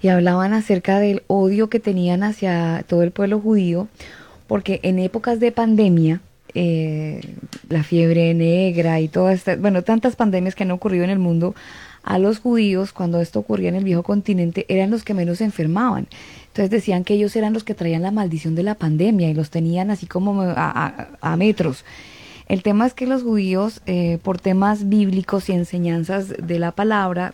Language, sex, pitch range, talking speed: Spanish, female, 180-210 Hz, 185 wpm